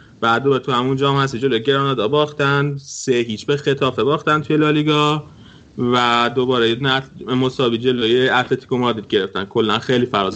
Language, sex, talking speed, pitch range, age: Persian, male, 150 wpm, 115-140 Hz, 30-49